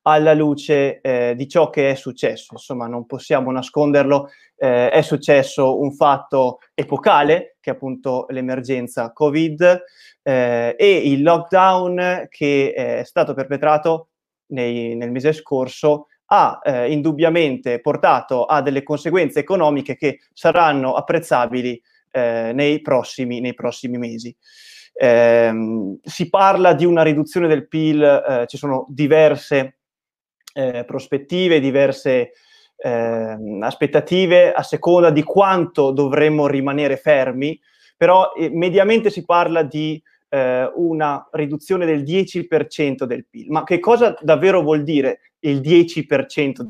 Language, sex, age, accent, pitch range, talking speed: Italian, male, 20-39, native, 135-170 Hz, 125 wpm